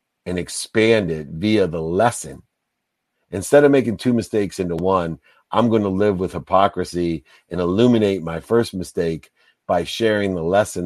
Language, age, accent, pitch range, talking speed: English, 50-69, American, 85-105 Hz, 150 wpm